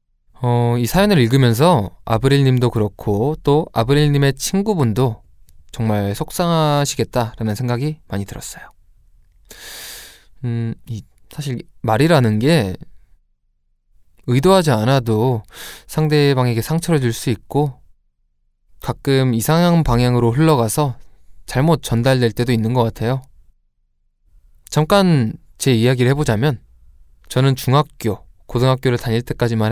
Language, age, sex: Korean, 20-39, male